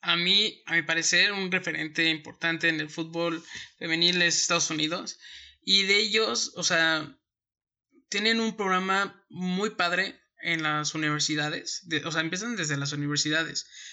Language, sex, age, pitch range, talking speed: Spanish, male, 20-39, 155-185 Hz, 150 wpm